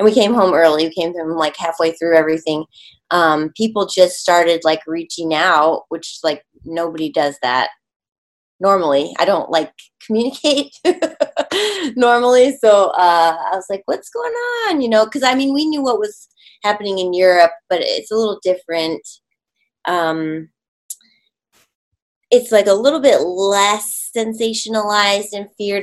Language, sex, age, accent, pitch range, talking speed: English, female, 20-39, American, 170-270 Hz, 150 wpm